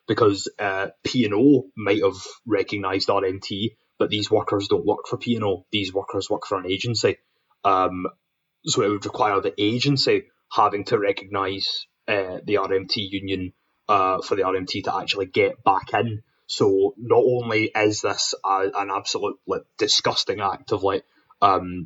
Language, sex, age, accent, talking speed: English, male, 20-39, British, 165 wpm